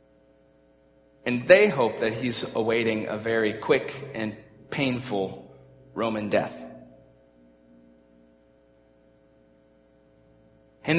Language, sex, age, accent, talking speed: English, male, 40-59, American, 75 wpm